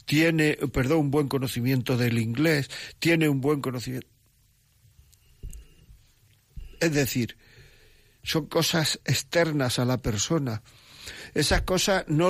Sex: male